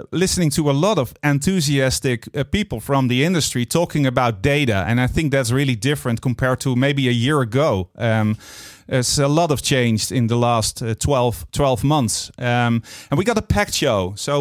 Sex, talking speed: male, 185 wpm